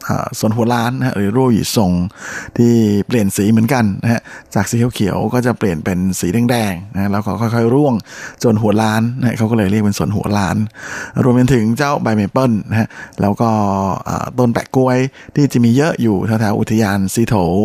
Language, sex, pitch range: Thai, male, 105-125 Hz